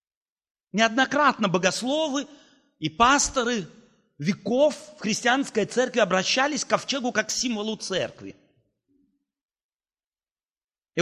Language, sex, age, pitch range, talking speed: Russian, male, 40-59, 190-295 Hz, 80 wpm